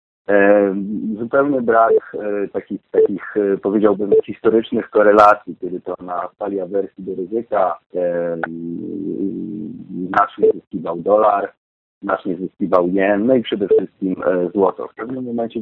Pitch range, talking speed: 95-115 Hz, 125 wpm